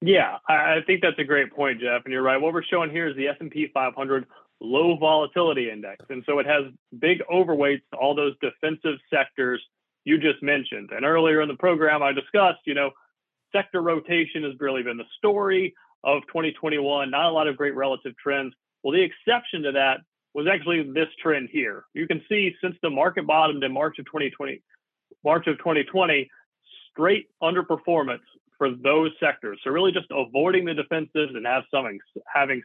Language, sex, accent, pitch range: English, male, American, 135-165 Hz